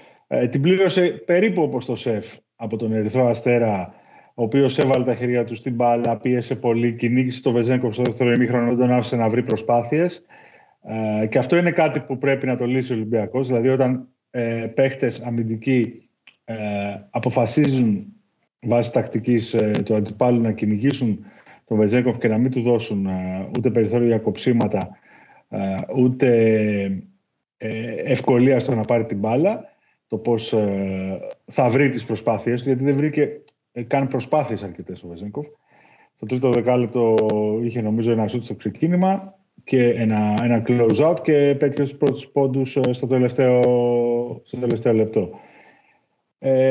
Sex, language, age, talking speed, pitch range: male, Greek, 30-49, 140 wpm, 115-140 Hz